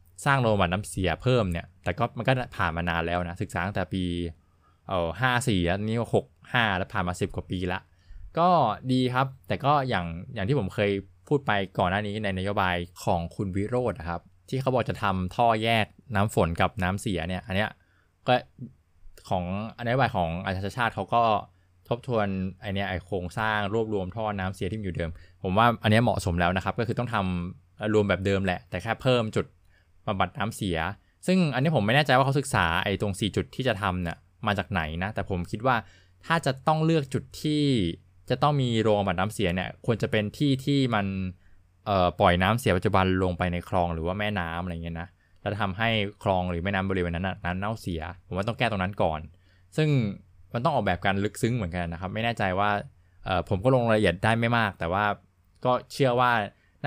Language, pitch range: Thai, 90-115 Hz